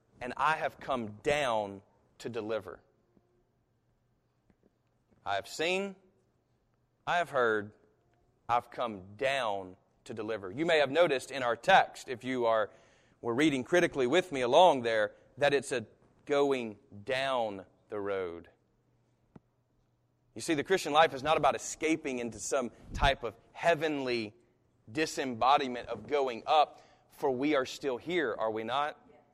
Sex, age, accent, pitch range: male, 30-49, American, 115-165 Hz